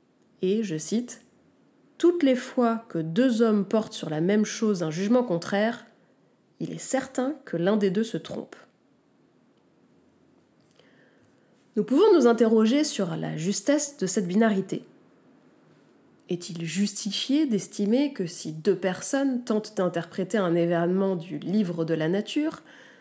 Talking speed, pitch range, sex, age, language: 135 wpm, 180-250 Hz, female, 20-39, French